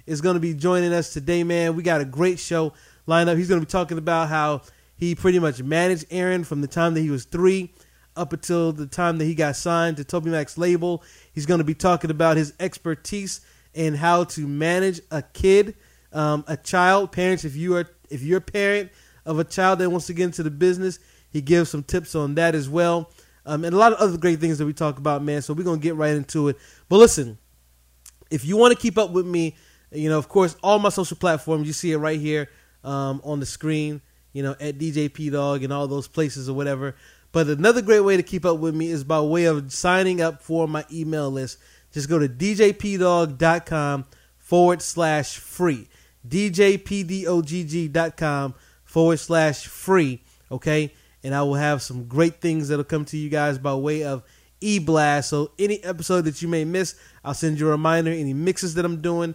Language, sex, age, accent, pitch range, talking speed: English, male, 20-39, American, 150-175 Hz, 215 wpm